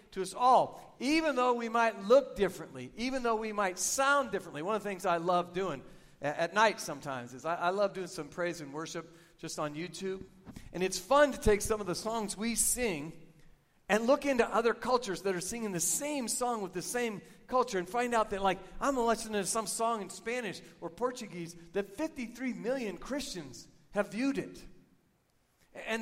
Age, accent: 50-69, American